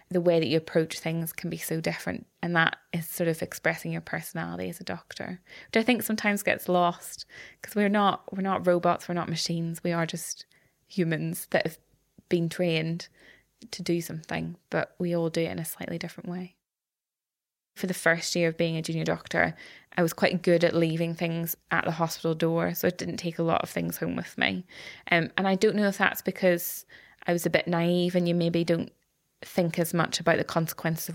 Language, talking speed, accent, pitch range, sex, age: English, 215 wpm, British, 160-175 Hz, female, 20-39